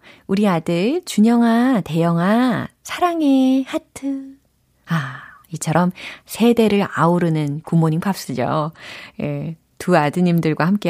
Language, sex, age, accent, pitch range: Korean, female, 30-49, native, 155-255 Hz